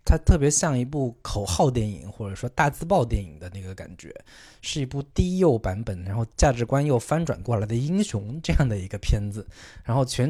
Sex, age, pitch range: male, 20-39, 105-140 Hz